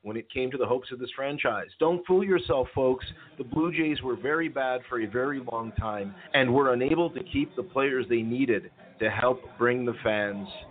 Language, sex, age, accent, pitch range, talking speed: English, male, 40-59, American, 120-150 Hz, 215 wpm